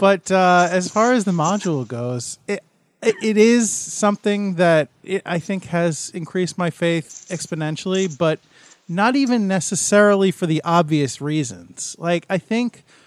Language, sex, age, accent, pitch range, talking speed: English, male, 30-49, American, 150-190 Hz, 145 wpm